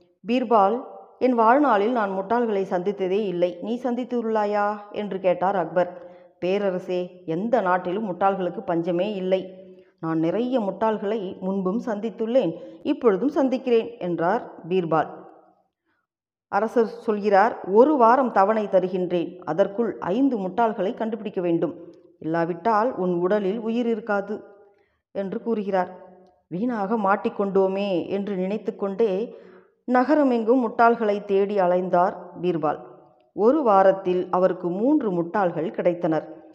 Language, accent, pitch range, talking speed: Tamil, native, 180-235 Hz, 100 wpm